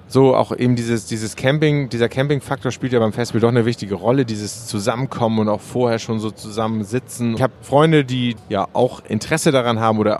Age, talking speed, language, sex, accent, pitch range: 30-49, 200 wpm, German, male, German, 105-125 Hz